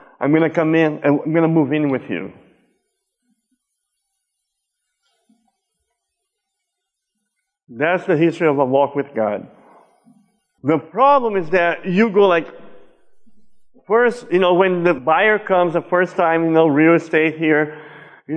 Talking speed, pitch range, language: 145 wpm, 160-245 Hz, English